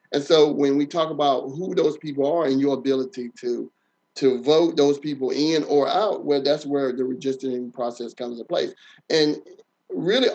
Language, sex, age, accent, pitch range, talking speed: English, male, 30-49, American, 140-165 Hz, 185 wpm